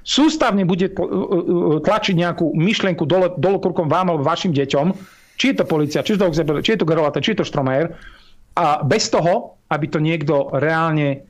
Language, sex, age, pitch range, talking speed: Slovak, male, 50-69, 145-190 Hz, 165 wpm